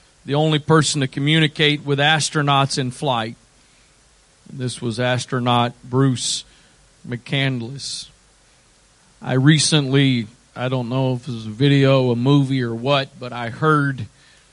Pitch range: 130-160 Hz